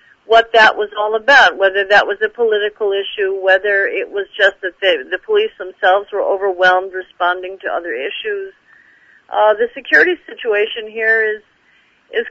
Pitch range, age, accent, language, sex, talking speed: 185-240 Hz, 50-69, American, English, female, 155 wpm